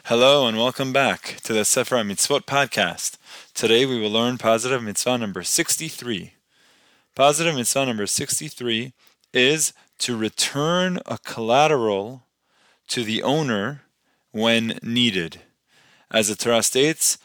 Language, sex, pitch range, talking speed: English, male, 110-135 Hz, 120 wpm